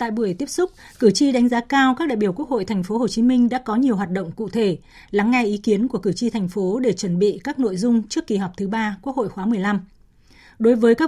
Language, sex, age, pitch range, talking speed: Vietnamese, female, 20-39, 205-250 Hz, 285 wpm